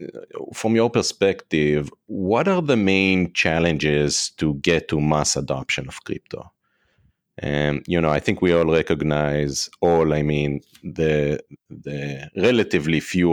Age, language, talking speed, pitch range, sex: 30-49, English, 135 wpm, 75-85 Hz, male